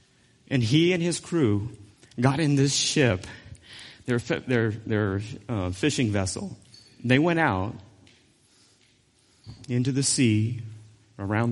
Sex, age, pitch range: male, 40-59, 110-135 Hz